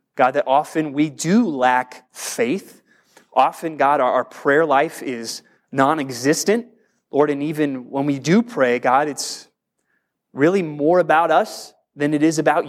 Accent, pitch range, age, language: American, 140-190 Hz, 30-49, English